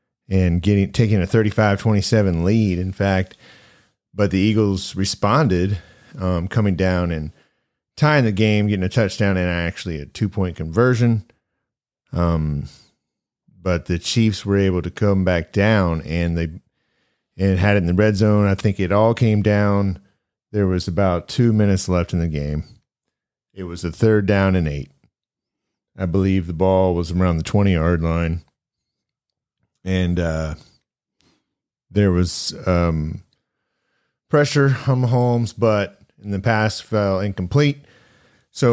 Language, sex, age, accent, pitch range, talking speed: English, male, 40-59, American, 90-110 Hz, 145 wpm